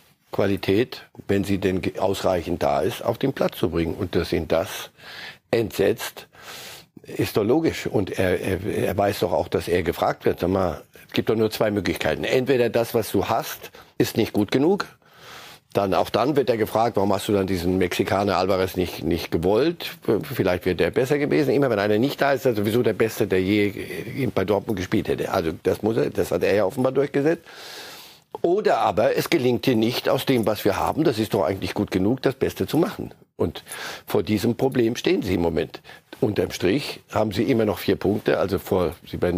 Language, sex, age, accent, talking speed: German, male, 50-69, German, 210 wpm